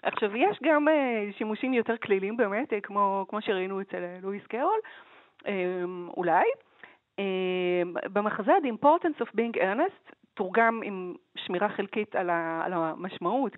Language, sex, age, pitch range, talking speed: Hebrew, female, 40-59, 180-285 Hz, 125 wpm